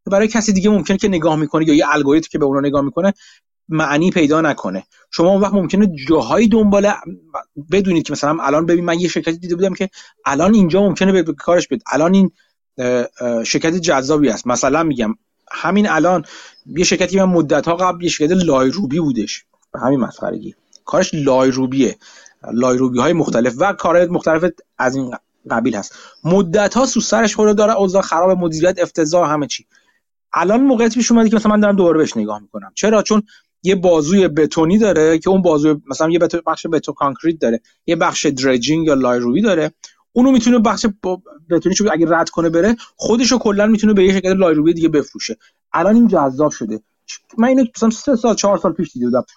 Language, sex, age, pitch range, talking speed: Persian, male, 30-49, 155-200 Hz, 180 wpm